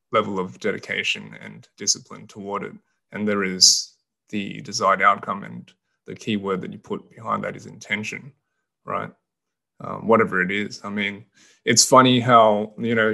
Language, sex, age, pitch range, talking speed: English, male, 20-39, 100-125 Hz, 165 wpm